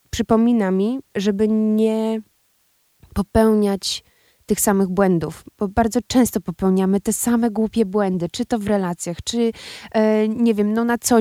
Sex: female